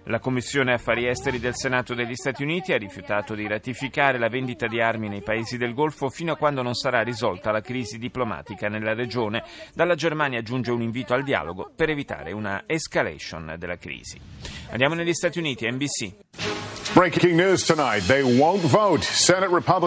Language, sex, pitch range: Italian, male, 115-150 Hz